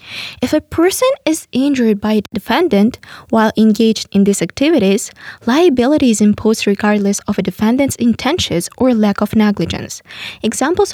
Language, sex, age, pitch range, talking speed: English, female, 10-29, 205-275 Hz, 145 wpm